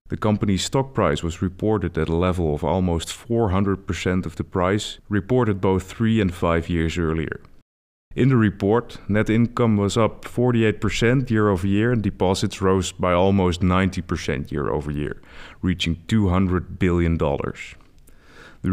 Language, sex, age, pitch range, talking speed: English, male, 30-49, 85-105 Hz, 135 wpm